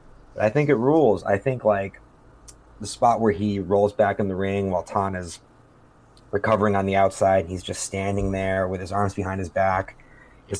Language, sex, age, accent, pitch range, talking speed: English, male, 30-49, American, 95-125 Hz, 200 wpm